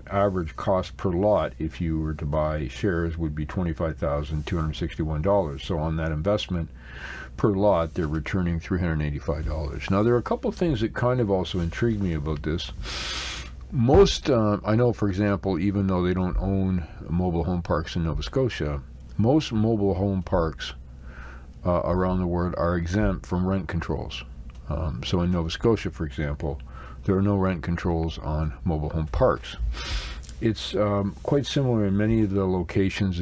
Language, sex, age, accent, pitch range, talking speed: English, male, 50-69, American, 75-100 Hz, 165 wpm